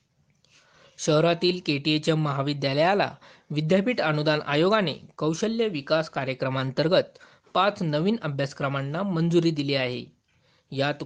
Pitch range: 140-185 Hz